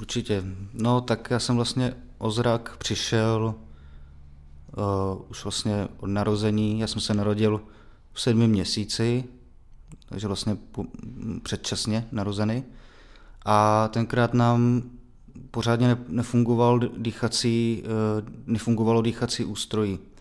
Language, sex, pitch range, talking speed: Czech, male, 100-115 Hz, 105 wpm